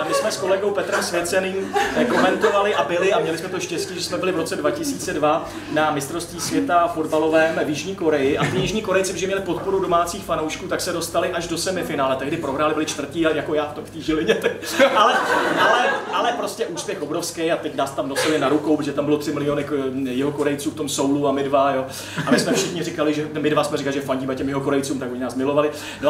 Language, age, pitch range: Czech, 30-49, 150-185 Hz